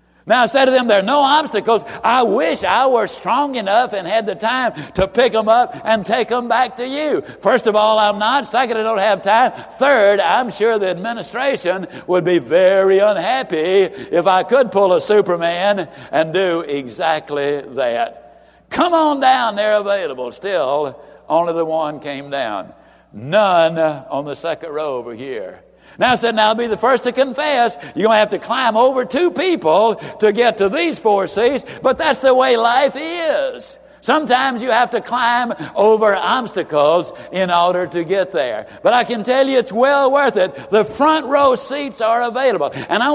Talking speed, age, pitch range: 190 wpm, 60-79, 175-245 Hz